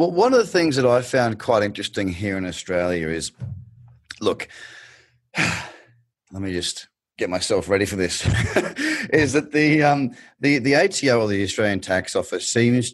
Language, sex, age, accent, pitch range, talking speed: English, male, 30-49, Australian, 95-130 Hz, 165 wpm